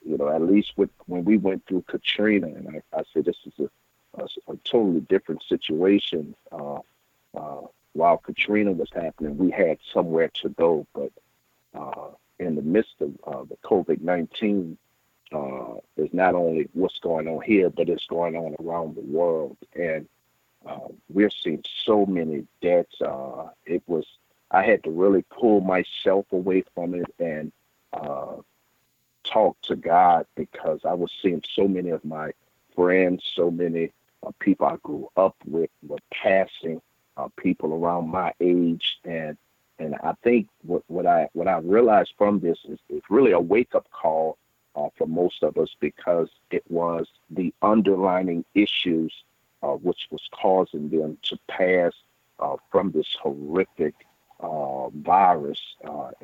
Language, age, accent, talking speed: English, 50-69, American, 155 wpm